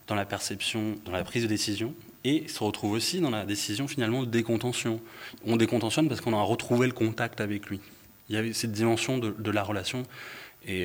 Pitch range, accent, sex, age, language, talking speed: 100-120 Hz, French, male, 30-49, French, 210 wpm